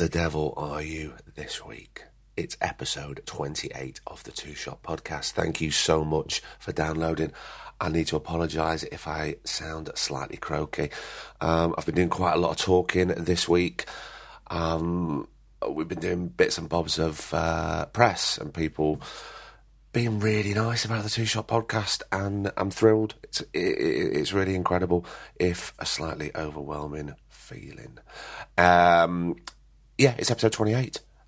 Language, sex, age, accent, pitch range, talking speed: English, male, 30-49, British, 80-100 Hz, 150 wpm